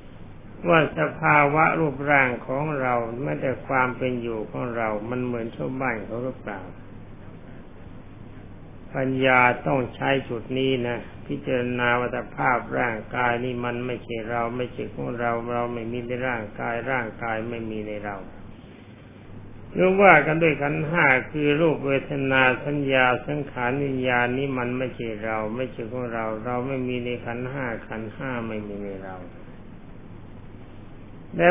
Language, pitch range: Thai, 110-130 Hz